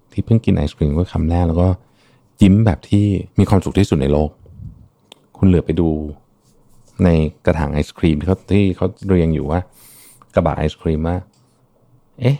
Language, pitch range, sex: Thai, 85-110 Hz, male